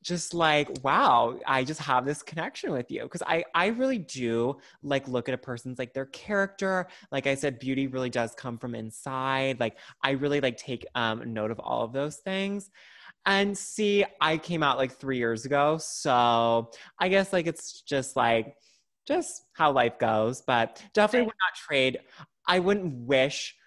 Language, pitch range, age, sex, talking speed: English, 115-165 Hz, 20-39, male, 185 wpm